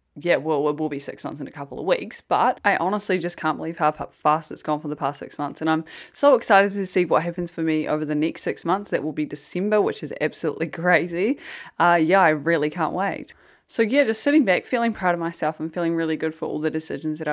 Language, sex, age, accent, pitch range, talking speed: English, female, 20-39, Australian, 150-180 Hz, 255 wpm